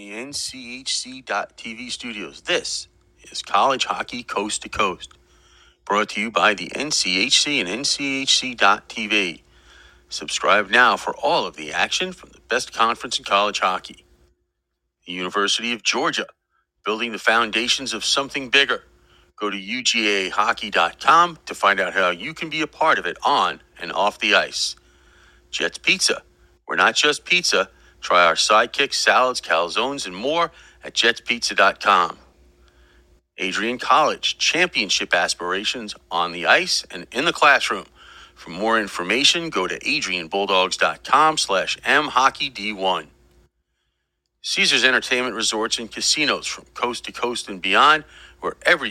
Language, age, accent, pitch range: English, 40-59, American, 90-135 Hz